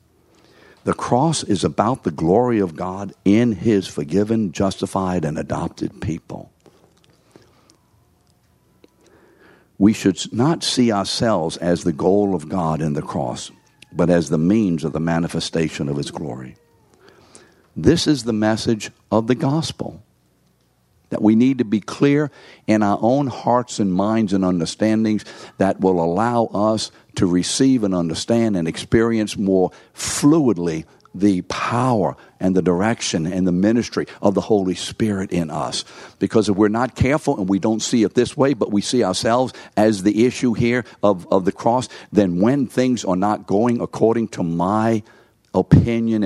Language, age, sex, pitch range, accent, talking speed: English, 60-79, male, 90-115 Hz, American, 155 wpm